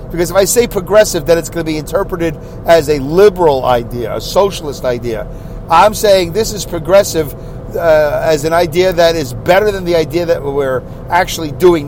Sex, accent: male, American